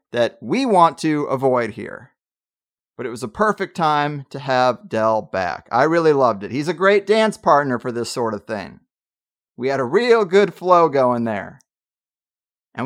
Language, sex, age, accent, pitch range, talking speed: English, male, 30-49, American, 130-175 Hz, 180 wpm